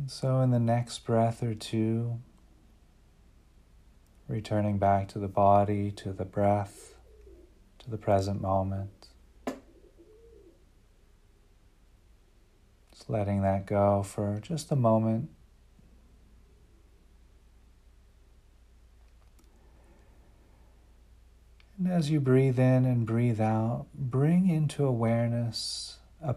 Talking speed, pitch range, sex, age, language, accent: 90 wpm, 95-120 Hz, male, 40-59, English, American